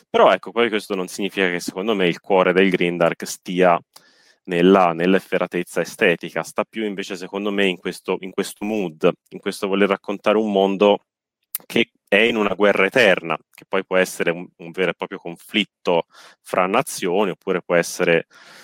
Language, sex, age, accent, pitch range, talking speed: Italian, male, 20-39, native, 90-105 Hz, 175 wpm